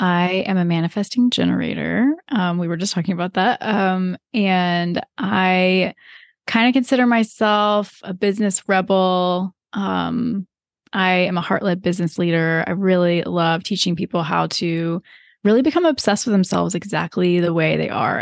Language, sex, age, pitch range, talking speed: English, female, 20-39, 175-210 Hz, 155 wpm